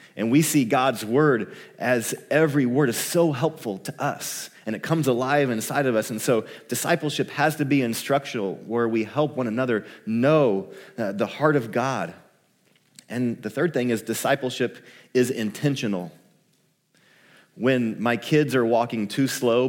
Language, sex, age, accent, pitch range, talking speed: English, male, 30-49, American, 120-145 Hz, 160 wpm